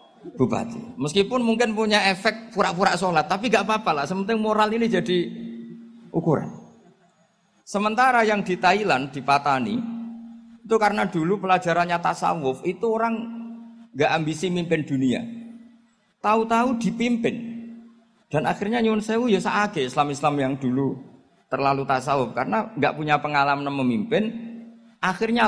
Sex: male